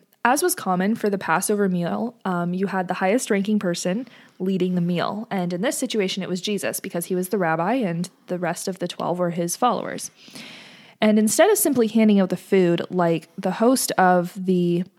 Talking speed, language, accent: 205 wpm, English, American